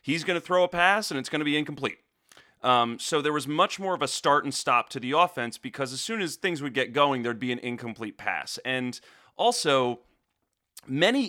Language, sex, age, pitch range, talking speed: English, male, 30-49, 125-155 Hz, 225 wpm